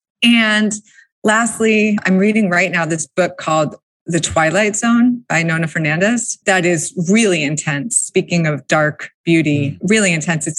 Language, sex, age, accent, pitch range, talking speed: English, female, 20-39, American, 155-185 Hz, 145 wpm